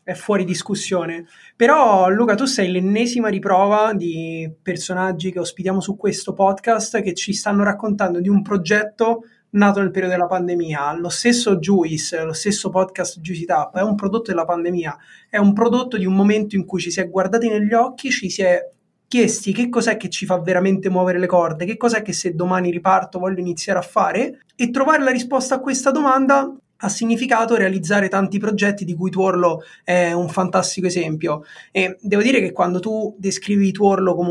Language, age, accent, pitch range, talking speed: Italian, 20-39, native, 180-210 Hz, 185 wpm